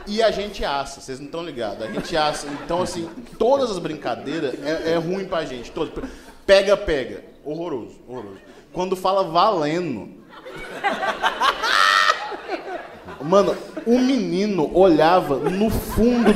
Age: 20-39